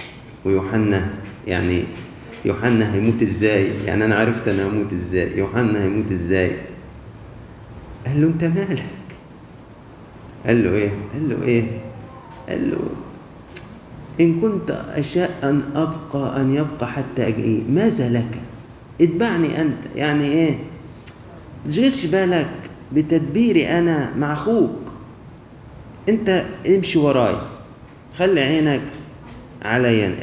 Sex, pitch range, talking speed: male, 110-145 Hz, 105 wpm